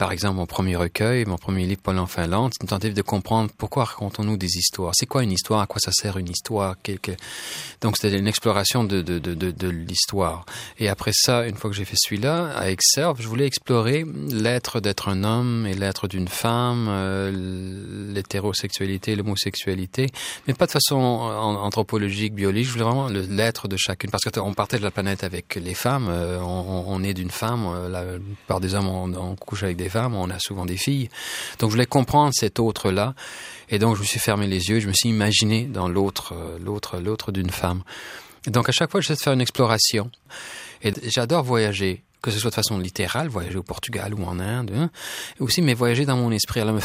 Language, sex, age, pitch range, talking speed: French, male, 30-49, 95-120 Hz, 215 wpm